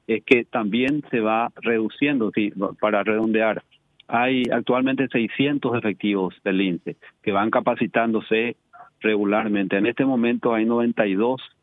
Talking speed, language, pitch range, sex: 120 wpm, Spanish, 105-125 Hz, male